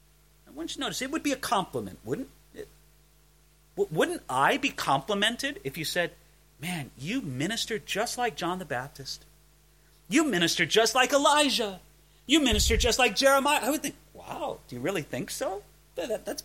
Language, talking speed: English, 155 wpm